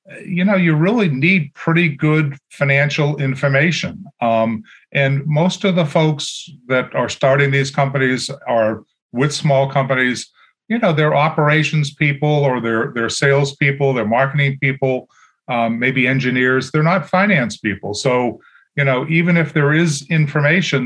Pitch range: 130-155 Hz